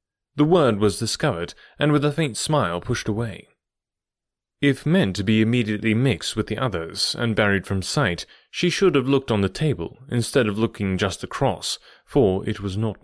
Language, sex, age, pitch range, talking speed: English, male, 30-49, 100-140 Hz, 185 wpm